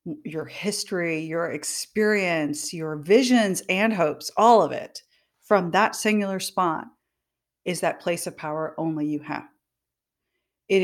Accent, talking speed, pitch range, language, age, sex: American, 135 wpm, 165-225 Hz, English, 40-59, female